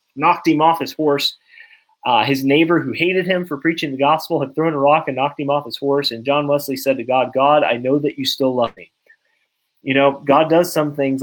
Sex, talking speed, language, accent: male, 240 wpm, English, American